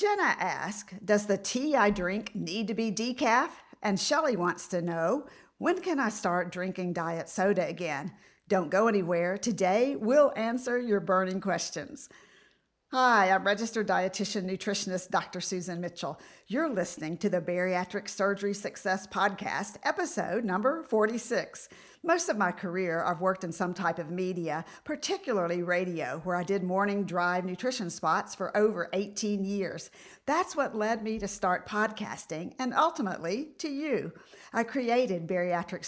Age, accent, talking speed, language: 50-69, American, 150 wpm, English